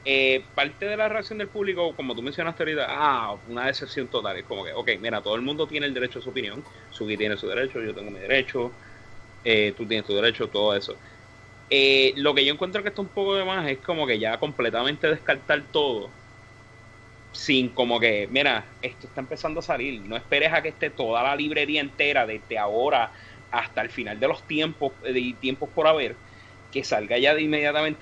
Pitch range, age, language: 110-160 Hz, 30-49, English